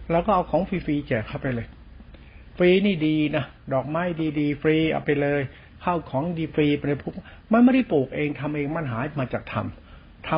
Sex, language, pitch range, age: male, Thai, 120-155 Hz, 60-79